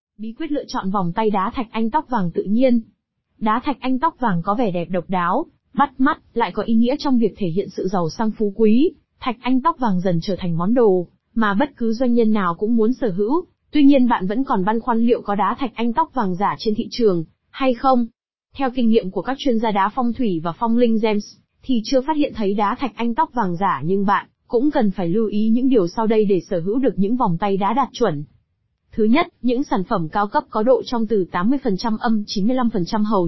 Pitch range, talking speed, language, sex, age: 200-255 Hz, 250 wpm, Vietnamese, female, 20-39